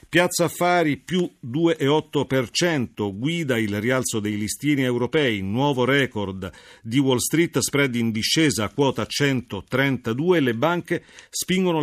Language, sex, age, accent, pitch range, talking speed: Italian, male, 40-59, native, 110-155 Hz, 115 wpm